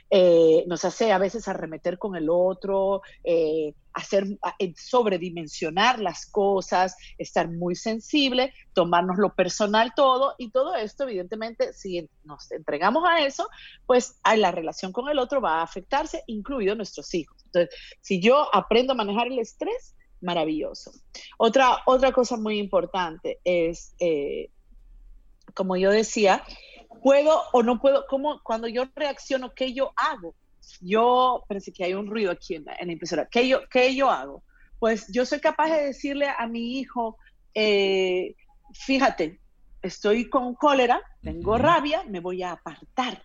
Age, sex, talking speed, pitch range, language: 40-59, female, 150 wpm, 180-260 Hz, Spanish